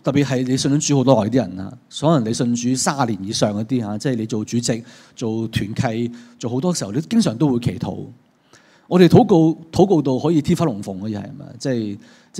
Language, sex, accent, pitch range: Chinese, male, native, 120-160 Hz